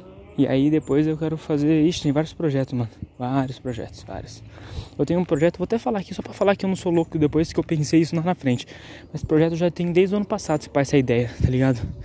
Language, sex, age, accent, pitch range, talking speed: Portuguese, male, 20-39, Brazilian, 135-175 Hz, 265 wpm